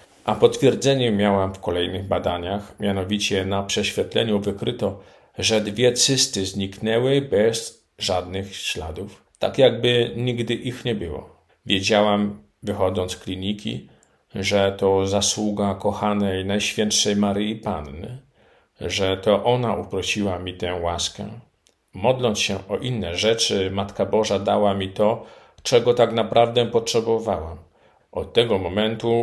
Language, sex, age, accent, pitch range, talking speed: Polish, male, 50-69, native, 95-120 Hz, 120 wpm